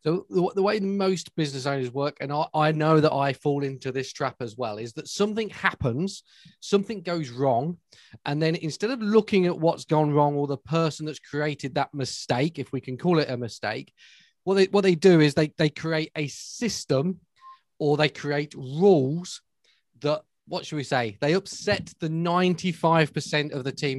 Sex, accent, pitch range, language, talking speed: male, British, 135-175 Hz, English, 190 wpm